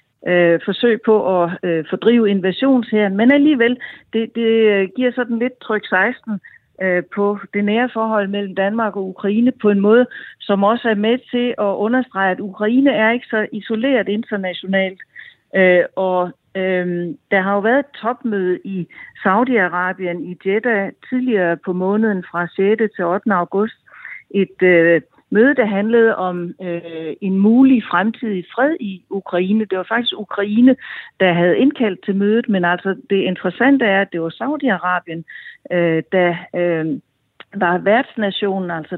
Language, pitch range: Danish, 185-230 Hz